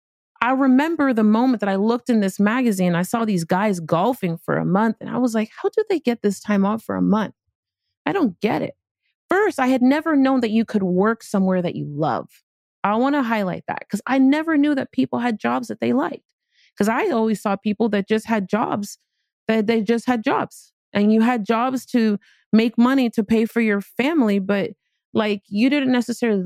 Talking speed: 220 wpm